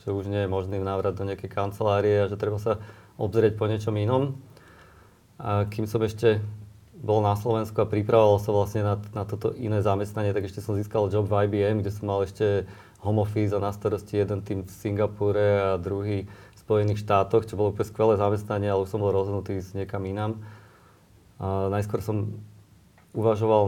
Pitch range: 100-110 Hz